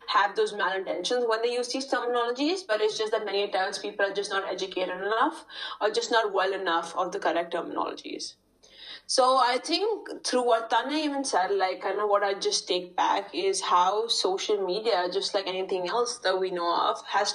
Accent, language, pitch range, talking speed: Indian, English, 190-250 Hz, 200 wpm